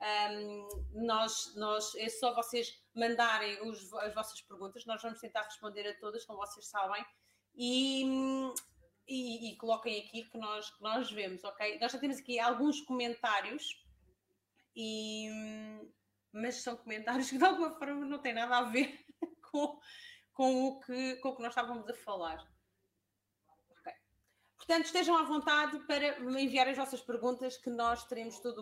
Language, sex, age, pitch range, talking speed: Portuguese, female, 30-49, 220-270 Hz, 155 wpm